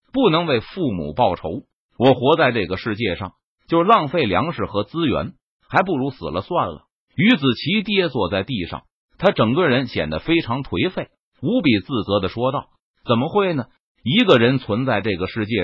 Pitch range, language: 120-190 Hz, Chinese